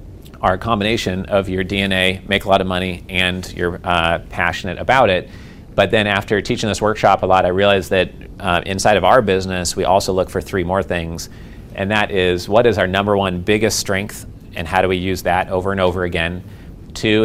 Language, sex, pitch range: English, male, 90-100 Hz